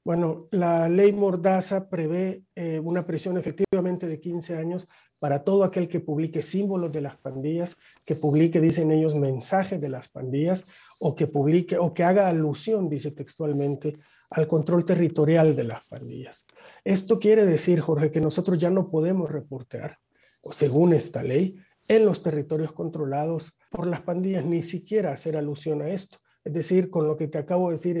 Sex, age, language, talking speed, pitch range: male, 50-69, Spanish, 170 wpm, 150-180 Hz